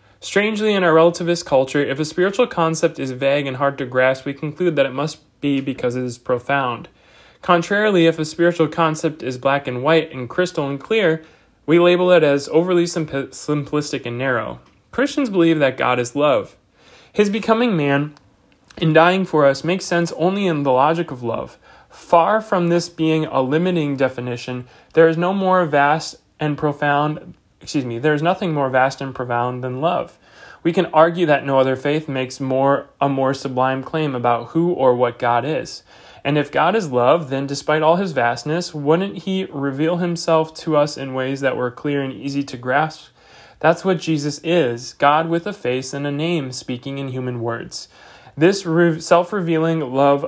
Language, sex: English, male